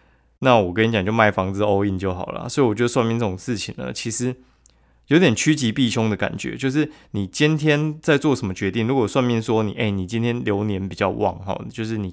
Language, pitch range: Chinese, 95-120 Hz